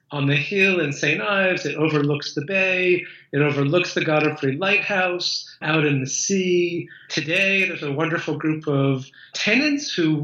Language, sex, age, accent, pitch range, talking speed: English, male, 40-59, American, 145-185 Hz, 160 wpm